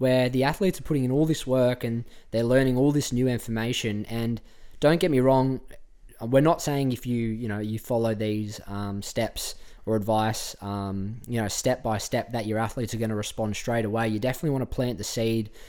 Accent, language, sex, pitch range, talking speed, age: Australian, English, male, 110-130 Hz, 220 wpm, 20-39